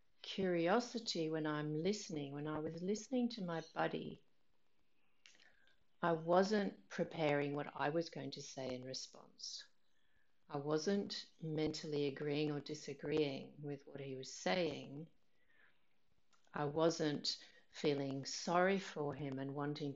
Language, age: English, 50-69